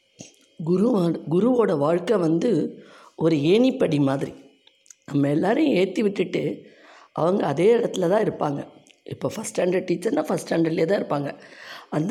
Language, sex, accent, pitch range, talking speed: Tamil, female, native, 150-190 Hz, 120 wpm